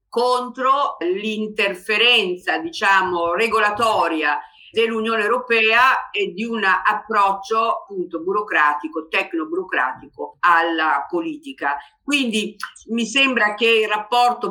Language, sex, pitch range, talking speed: Italian, female, 185-260 Hz, 85 wpm